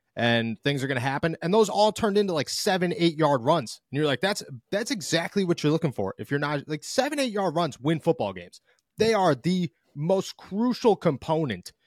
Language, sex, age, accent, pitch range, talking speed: English, male, 30-49, American, 120-165 Hz, 215 wpm